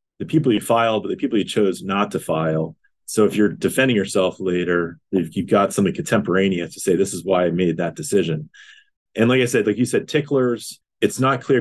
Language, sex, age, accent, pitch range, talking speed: English, male, 30-49, American, 100-125 Hz, 215 wpm